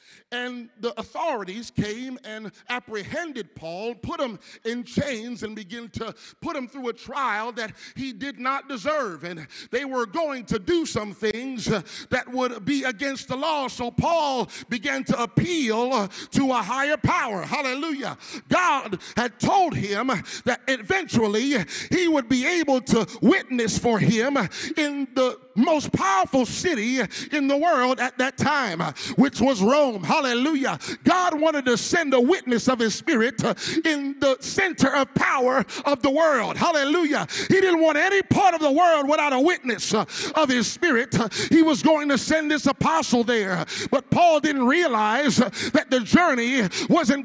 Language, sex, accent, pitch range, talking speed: English, male, American, 235-310 Hz, 160 wpm